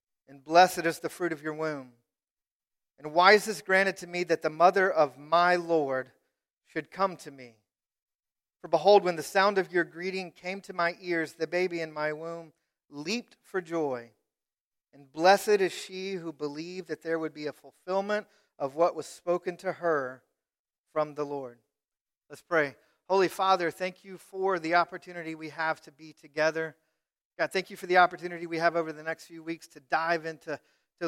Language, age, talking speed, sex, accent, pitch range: English, 40-59, 185 wpm, male, American, 155-180 Hz